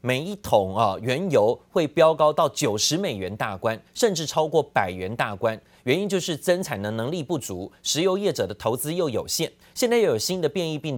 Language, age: Chinese, 30-49